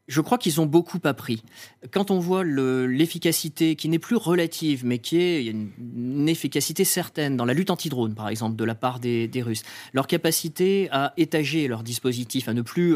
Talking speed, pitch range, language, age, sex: 215 wpm, 115-160 Hz, French, 30-49, male